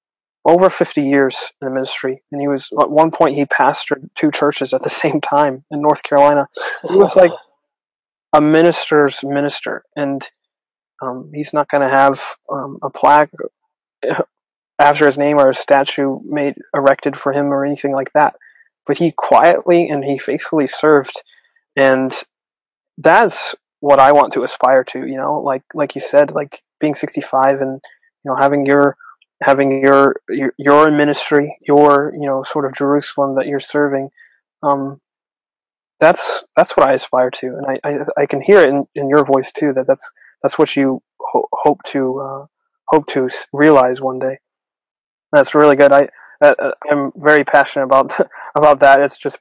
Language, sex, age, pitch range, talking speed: English, male, 20-39, 135-150 Hz, 170 wpm